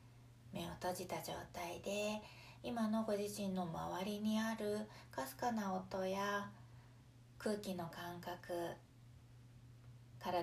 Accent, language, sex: native, Japanese, female